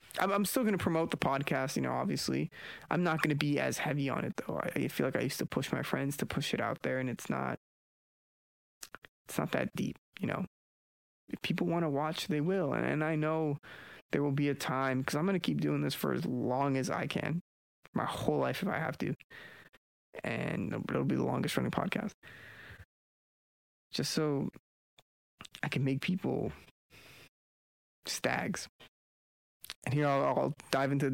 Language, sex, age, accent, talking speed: English, male, 20-39, American, 185 wpm